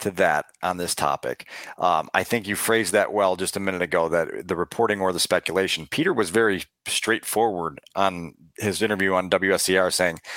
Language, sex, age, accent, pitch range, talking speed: English, male, 40-59, American, 95-125 Hz, 185 wpm